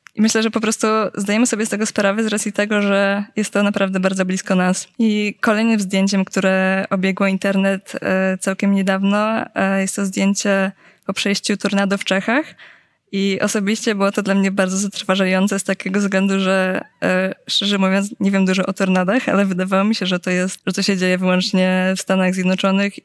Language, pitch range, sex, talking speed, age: Polish, 190-205 Hz, female, 180 wpm, 20-39